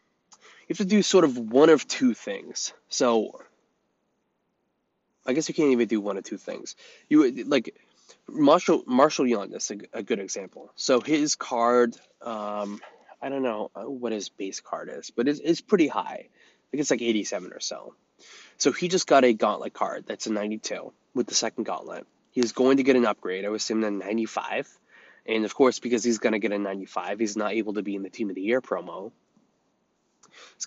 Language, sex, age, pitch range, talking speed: English, male, 20-39, 105-135 Hz, 205 wpm